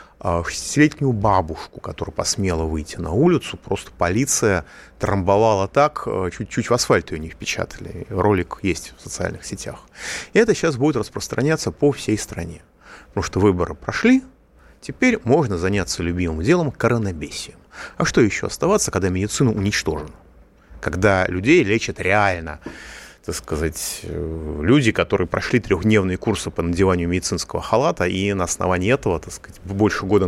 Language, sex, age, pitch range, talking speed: Russian, male, 30-49, 85-115 Hz, 140 wpm